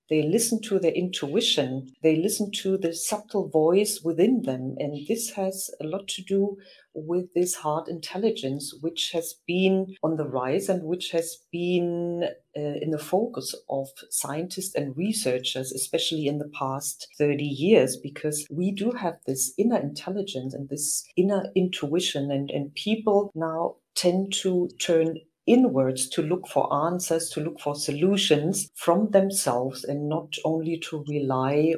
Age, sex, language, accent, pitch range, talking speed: 40-59, female, English, German, 145-185 Hz, 155 wpm